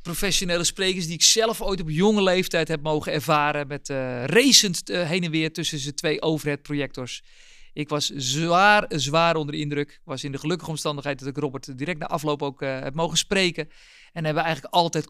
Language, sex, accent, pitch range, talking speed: Dutch, male, Dutch, 145-185 Hz, 205 wpm